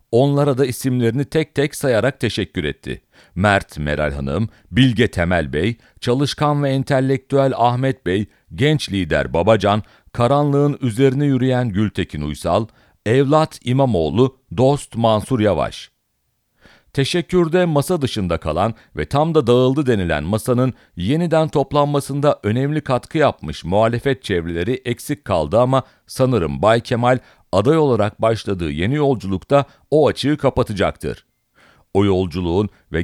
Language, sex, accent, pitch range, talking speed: English, male, Turkish, 95-140 Hz, 120 wpm